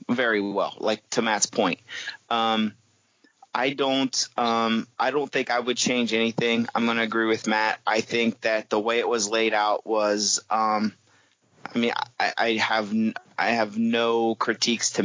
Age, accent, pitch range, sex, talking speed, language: 30-49, American, 110-125 Hz, male, 175 wpm, English